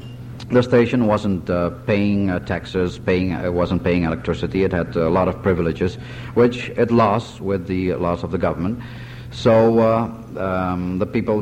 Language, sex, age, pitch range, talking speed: English, male, 50-69, 90-115 Hz, 160 wpm